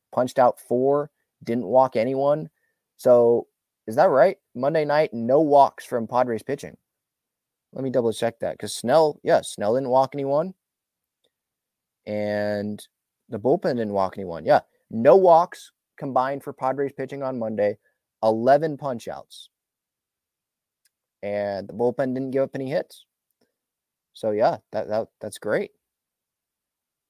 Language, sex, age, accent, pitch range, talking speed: English, male, 20-39, American, 115-145 Hz, 130 wpm